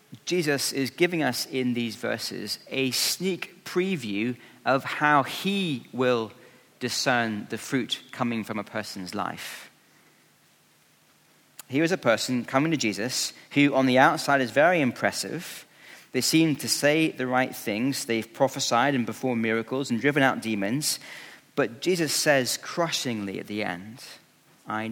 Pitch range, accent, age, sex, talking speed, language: 115-140 Hz, British, 40-59, male, 145 wpm, English